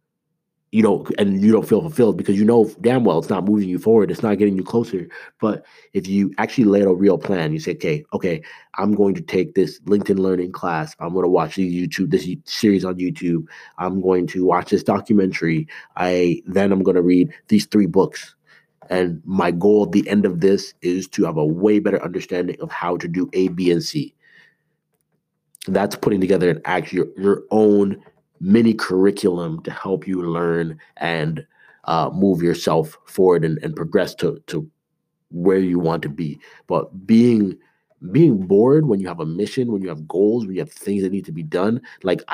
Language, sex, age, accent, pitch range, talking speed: English, male, 30-49, American, 90-140 Hz, 200 wpm